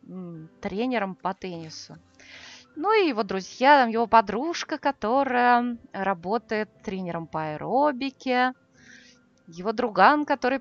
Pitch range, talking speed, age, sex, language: 190-260 Hz, 95 wpm, 20-39, female, Russian